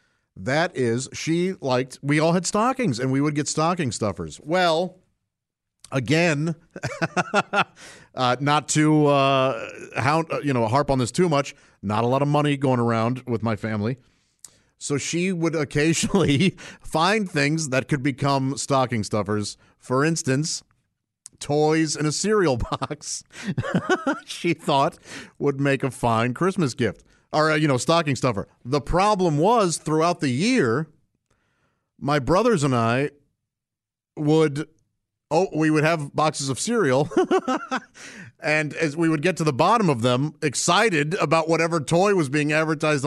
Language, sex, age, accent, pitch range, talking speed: English, male, 50-69, American, 130-170 Hz, 150 wpm